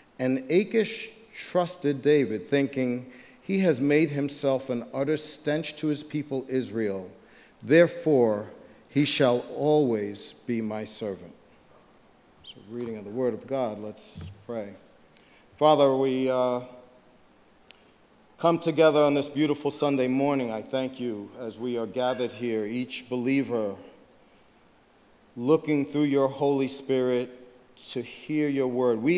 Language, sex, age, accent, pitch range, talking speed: English, male, 50-69, American, 115-140 Hz, 130 wpm